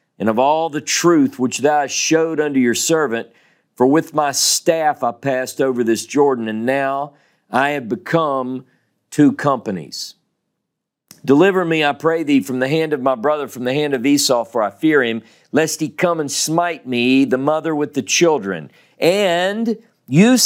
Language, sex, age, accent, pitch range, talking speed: English, male, 50-69, American, 130-170 Hz, 175 wpm